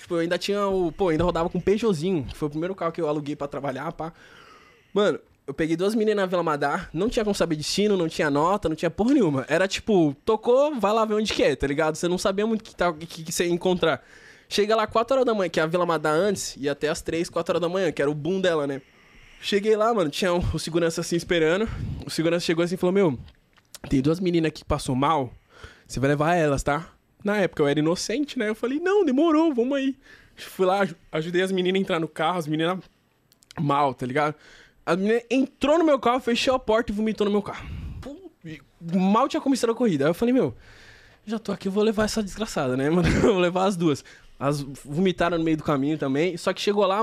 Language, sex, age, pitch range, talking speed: Portuguese, male, 20-39, 155-215 Hz, 245 wpm